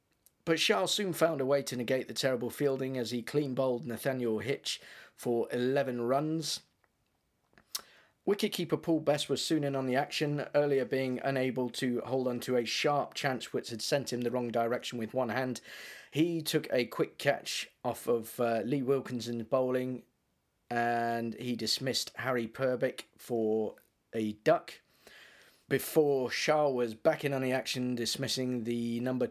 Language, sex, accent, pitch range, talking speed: English, male, British, 120-140 Hz, 160 wpm